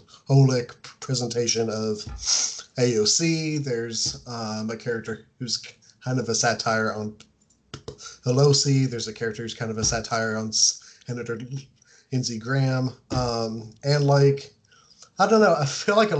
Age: 30-49